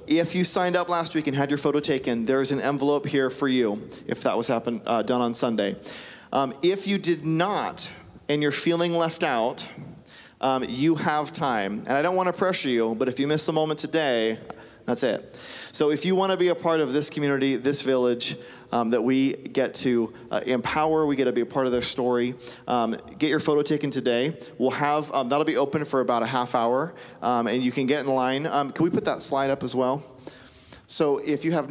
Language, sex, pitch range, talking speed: English, male, 125-150 Hz, 230 wpm